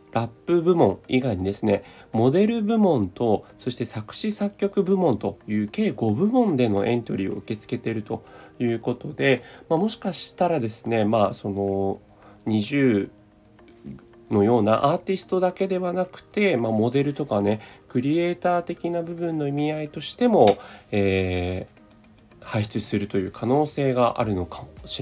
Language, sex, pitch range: Japanese, male, 100-145 Hz